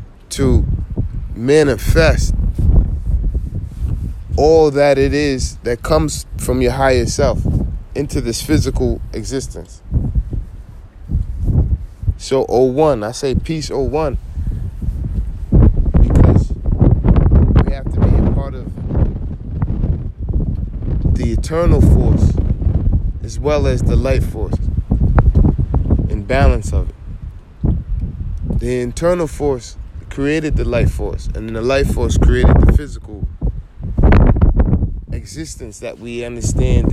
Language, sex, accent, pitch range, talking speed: English, male, American, 85-135 Hz, 100 wpm